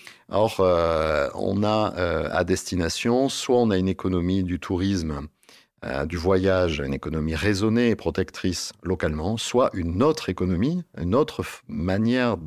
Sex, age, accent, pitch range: male, 50-69, French, 85-105 Hz